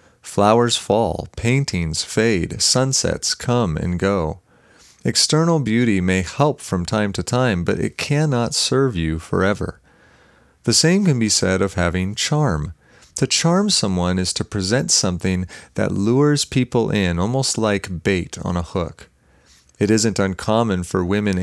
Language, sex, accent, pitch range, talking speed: English, male, American, 90-120 Hz, 145 wpm